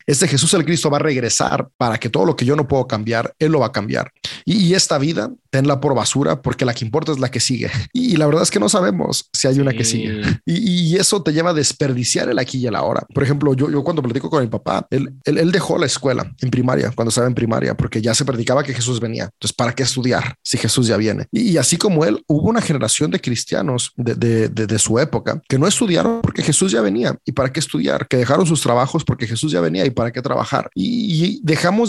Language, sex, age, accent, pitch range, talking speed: Spanish, male, 30-49, Mexican, 120-155 Hz, 260 wpm